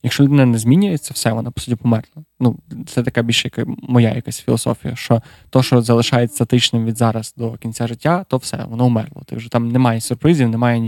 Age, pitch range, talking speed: 20-39, 115-130 Hz, 200 wpm